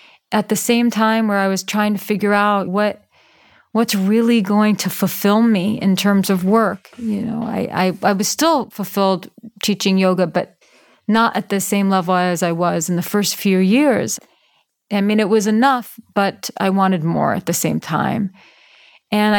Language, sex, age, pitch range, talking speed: English, female, 30-49, 190-220 Hz, 185 wpm